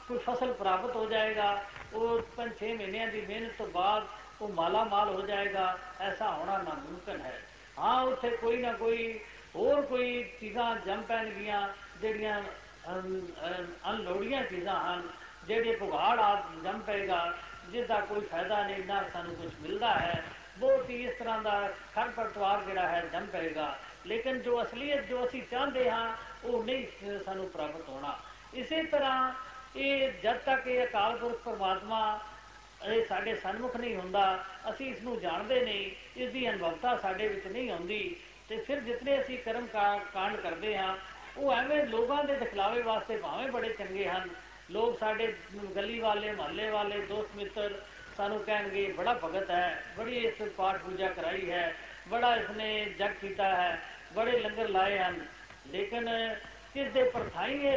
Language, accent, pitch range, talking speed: Hindi, native, 200-240 Hz, 145 wpm